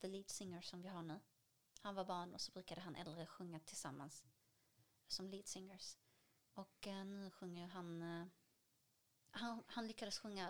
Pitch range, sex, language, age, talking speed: 165-200 Hz, female, Swedish, 30-49, 160 wpm